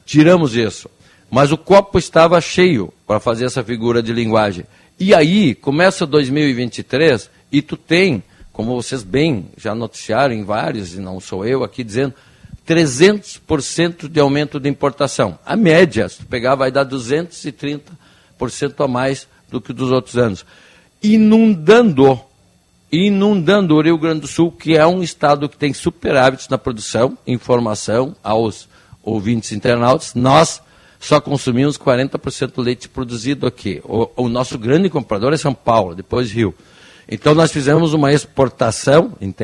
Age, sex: 60-79, male